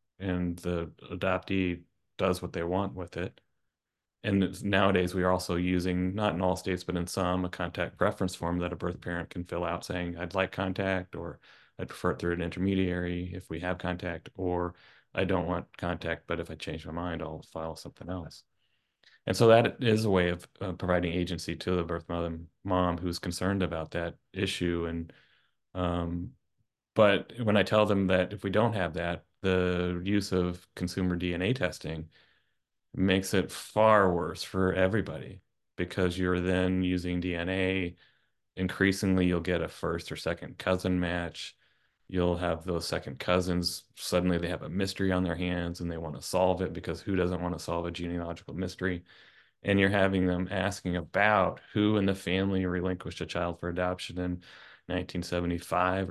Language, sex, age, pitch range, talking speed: English, male, 30-49, 85-95 Hz, 180 wpm